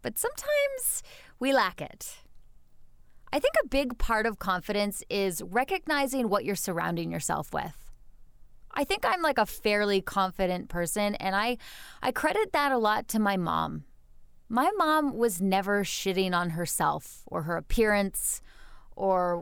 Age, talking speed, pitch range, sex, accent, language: 20-39, 150 wpm, 180-240 Hz, female, American, English